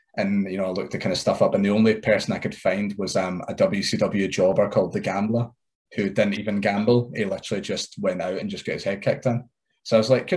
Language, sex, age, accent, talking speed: English, male, 20-39, British, 265 wpm